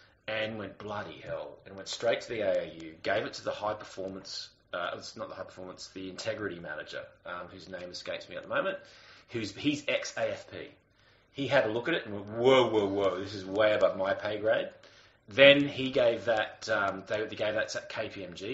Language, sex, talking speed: English, male, 195 wpm